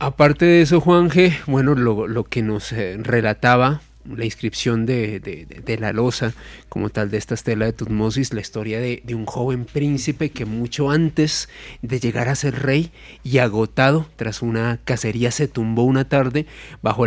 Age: 30-49